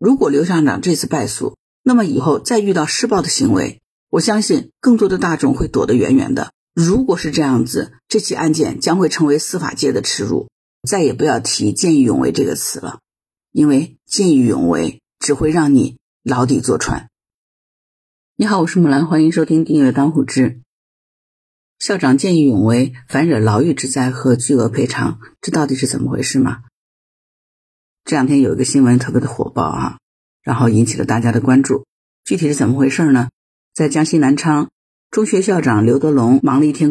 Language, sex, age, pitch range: Chinese, female, 50-69, 130-155 Hz